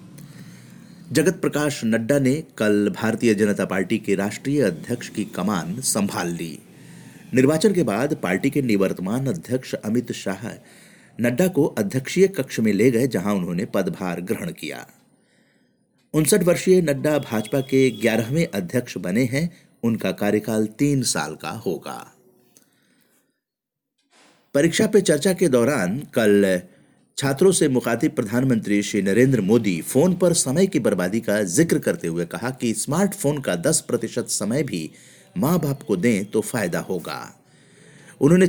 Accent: native